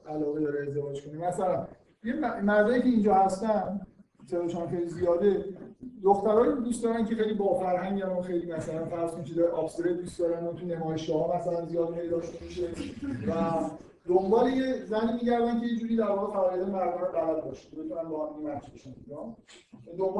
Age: 50-69